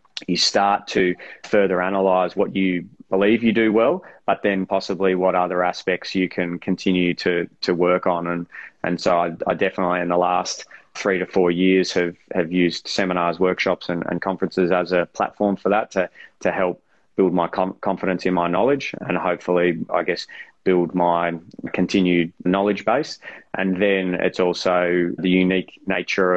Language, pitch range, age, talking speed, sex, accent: English, 90-95 Hz, 20-39, 175 wpm, male, Australian